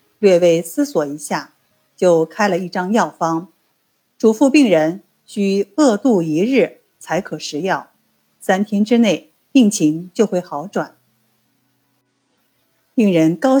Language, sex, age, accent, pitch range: Chinese, female, 50-69, native, 160-230 Hz